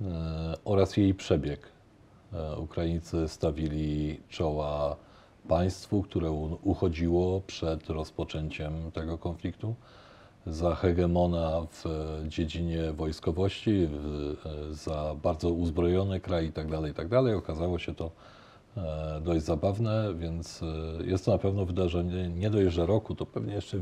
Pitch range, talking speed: 80-95 Hz, 110 wpm